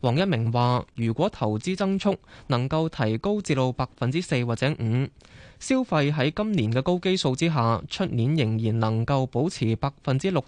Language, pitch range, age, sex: Chinese, 120-165 Hz, 20-39, male